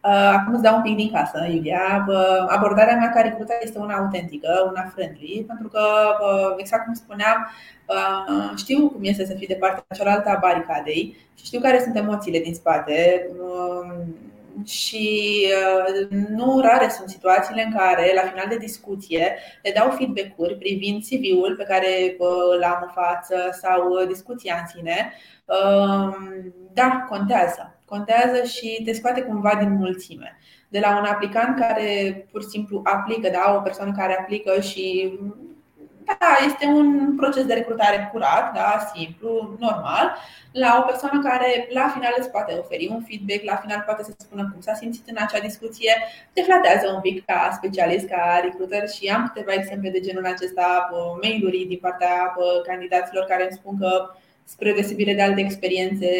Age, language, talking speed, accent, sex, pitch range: 20-39, Romanian, 155 wpm, native, female, 185-225 Hz